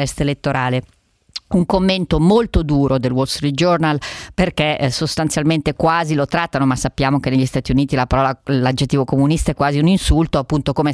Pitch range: 140-180 Hz